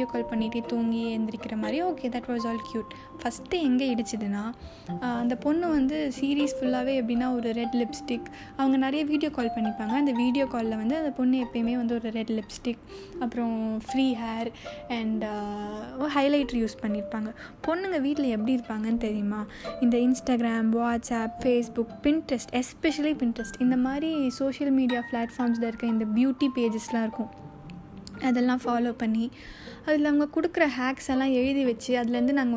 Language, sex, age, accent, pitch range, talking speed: Tamil, female, 10-29, native, 230-270 Hz, 145 wpm